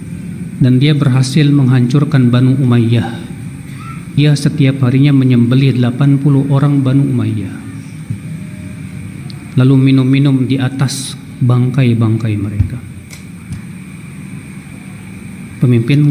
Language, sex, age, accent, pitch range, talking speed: Indonesian, male, 40-59, native, 125-150 Hz, 80 wpm